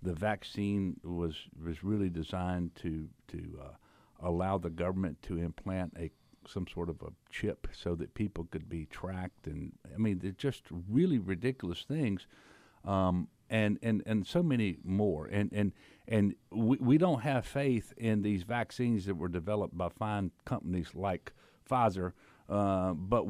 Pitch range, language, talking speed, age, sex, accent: 90-120 Hz, English, 160 wpm, 50-69, male, American